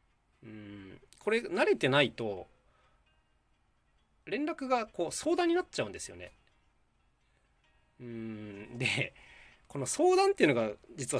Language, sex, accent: Japanese, male, native